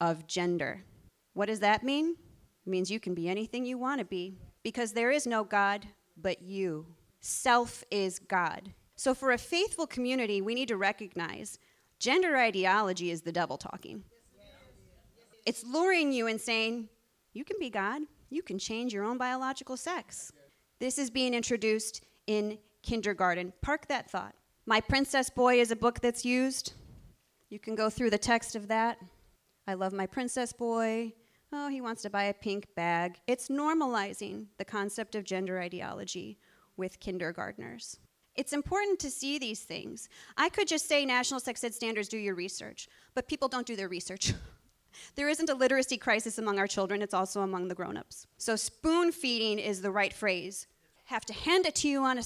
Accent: American